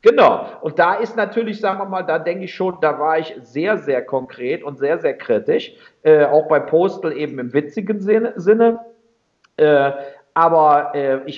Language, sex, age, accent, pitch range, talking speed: German, male, 50-69, German, 130-185 Hz, 185 wpm